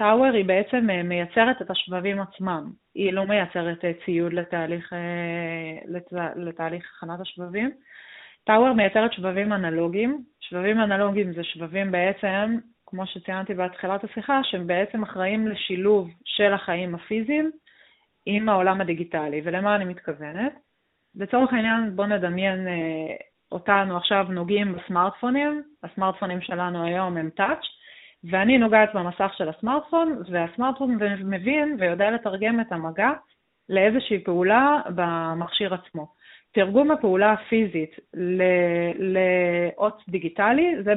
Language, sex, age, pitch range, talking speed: Hebrew, female, 20-39, 175-220 Hz, 115 wpm